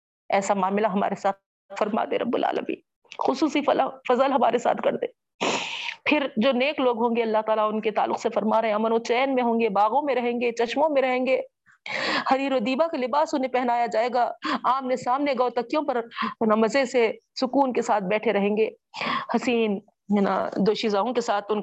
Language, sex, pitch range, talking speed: Urdu, female, 195-250 Hz, 190 wpm